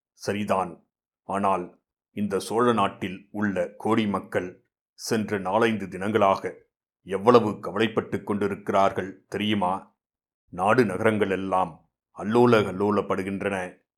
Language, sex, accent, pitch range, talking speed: Tamil, male, native, 100-120 Hz, 80 wpm